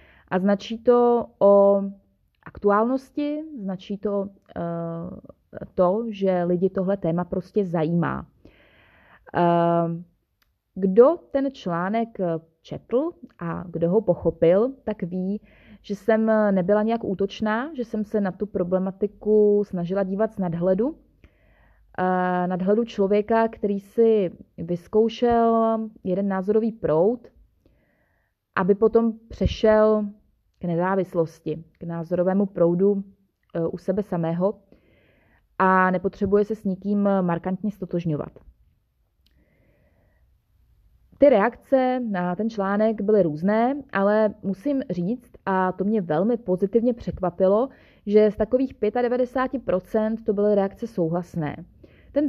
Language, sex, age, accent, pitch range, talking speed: Czech, female, 20-39, native, 180-220 Hz, 105 wpm